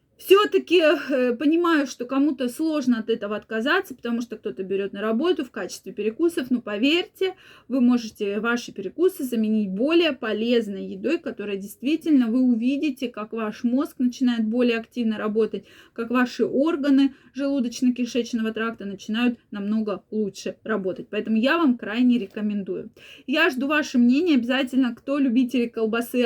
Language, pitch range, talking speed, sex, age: Russian, 215-265 Hz, 140 wpm, female, 20-39